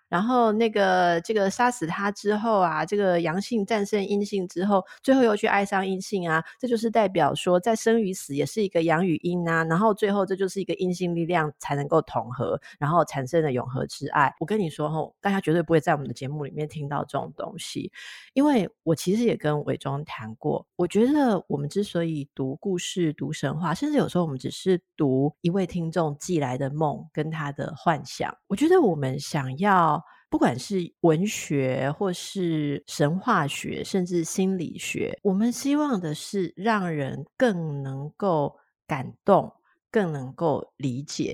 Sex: female